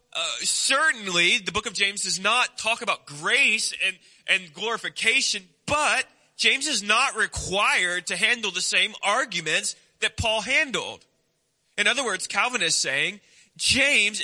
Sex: male